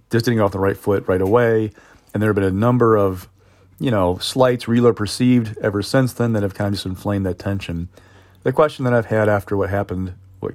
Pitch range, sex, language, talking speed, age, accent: 95-115 Hz, male, English, 235 wpm, 40-59, American